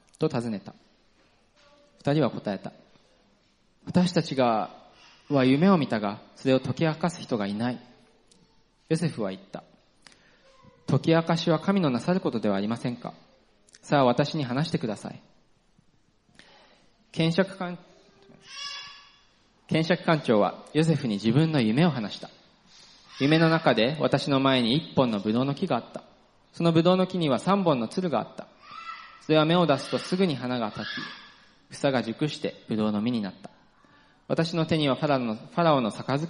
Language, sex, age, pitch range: English, male, 20-39, 125-175 Hz